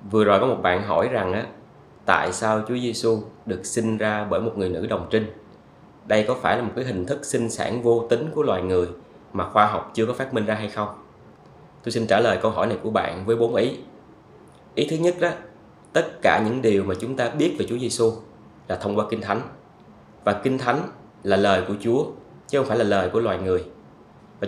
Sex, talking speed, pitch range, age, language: male, 230 wpm, 105-120 Hz, 20-39, Vietnamese